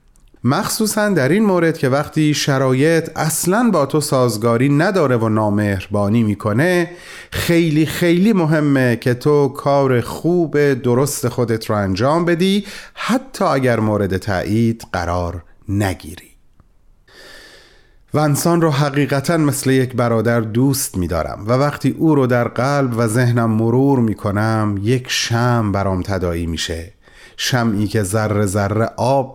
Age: 30-49